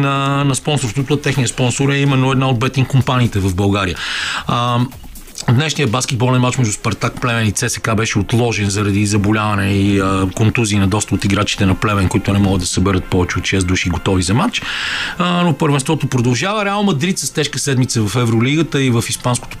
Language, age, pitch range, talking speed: Bulgarian, 40-59, 110-140 Hz, 180 wpm